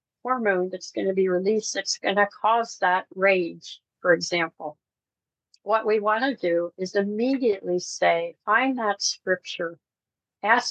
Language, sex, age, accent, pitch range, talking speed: English, female, 60-79, American, 180-220 Hz, 145 wpm